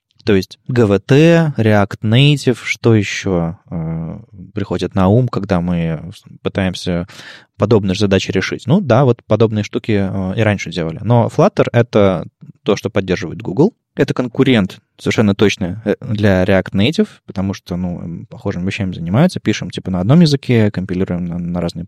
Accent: native